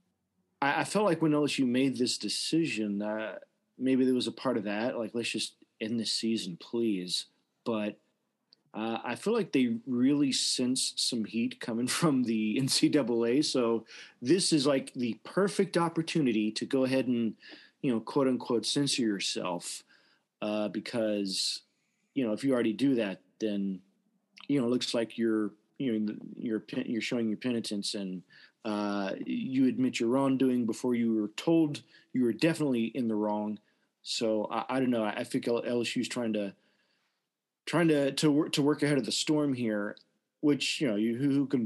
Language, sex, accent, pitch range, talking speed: English, male, American, 110-145 Hz, 175 wpm